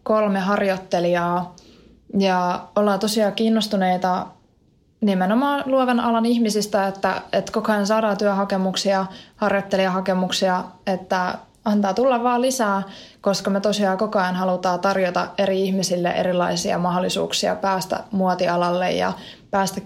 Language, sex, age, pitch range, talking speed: Finnish, female, 20-39, 185-210 Hz, 110 wpm